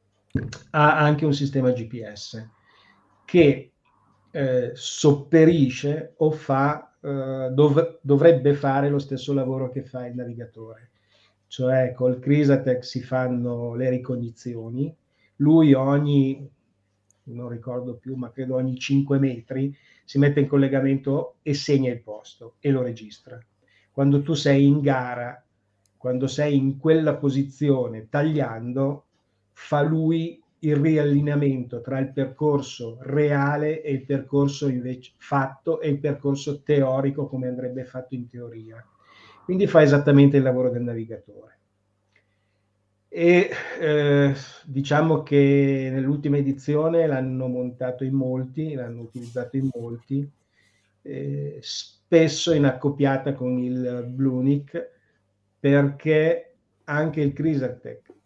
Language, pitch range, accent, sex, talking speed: Italian, 125-145 Hz, native, male, 115 wpm